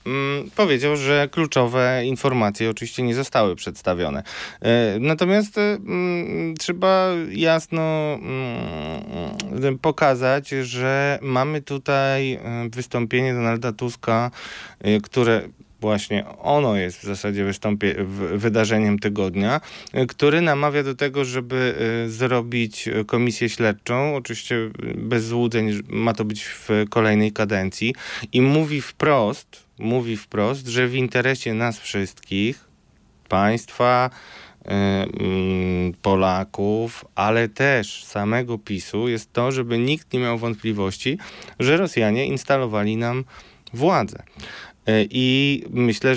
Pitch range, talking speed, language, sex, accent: 105-135 Hz, 95 wpm, Polish, male, native